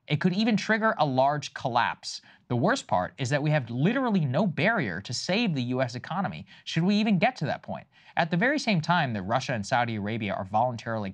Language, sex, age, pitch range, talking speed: English, male, 20-39, 115-170 Hz, 220 wpm